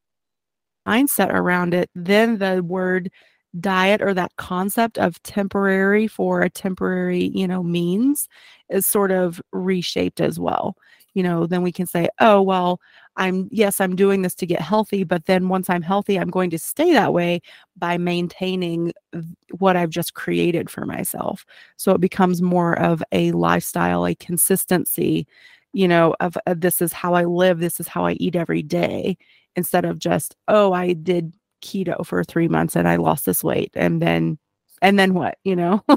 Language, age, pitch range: English, 30-49, 175-210 Hz